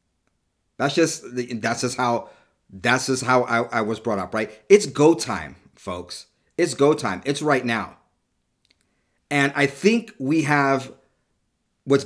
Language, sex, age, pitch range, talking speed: English, male, 30-49, 120-145 Hz, 150 wpm